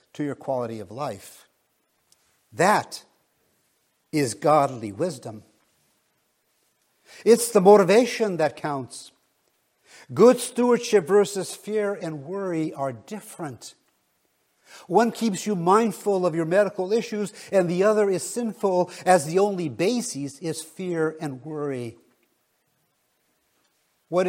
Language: English